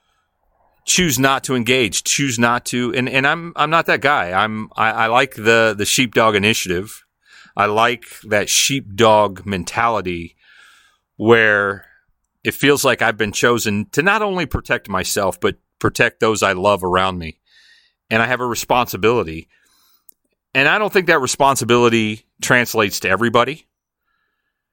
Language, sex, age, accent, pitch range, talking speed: English, male, 40-59, American, 95-125 Hz, 145 wpm